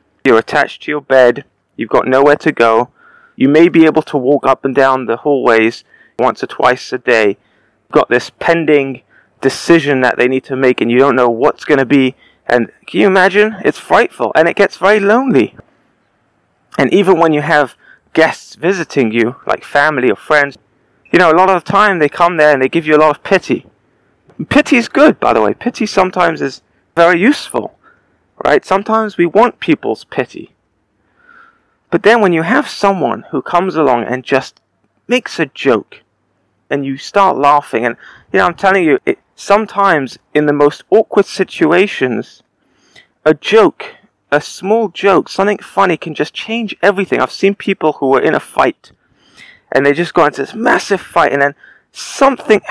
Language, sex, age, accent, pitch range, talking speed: English, male, 30-49, British, 135-200 Hz, 185 wpm